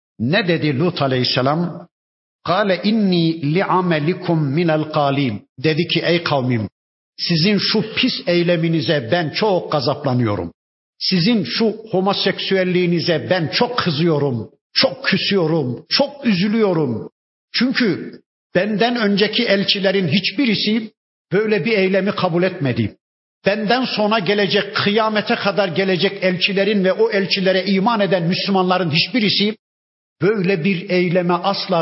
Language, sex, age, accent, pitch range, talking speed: Turkish, male, 60-79, native, 165-205 Hz, 110 wpm